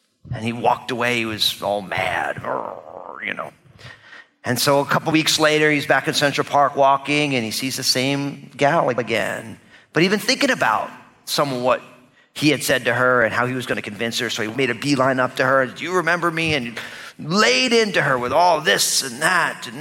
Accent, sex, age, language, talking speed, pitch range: American, male, 40-59, English, 215 wpm, 110-135 Hz